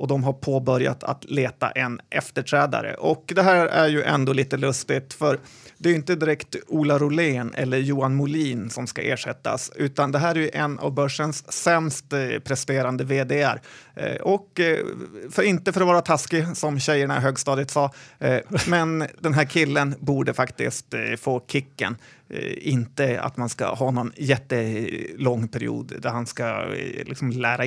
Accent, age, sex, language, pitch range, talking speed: native, 30-49, male, Swedish, 130-155 Hz, 160 wpm